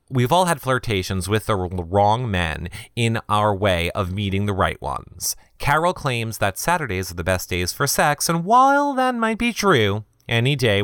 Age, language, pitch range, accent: 30-49, English, 95-135 Hz, American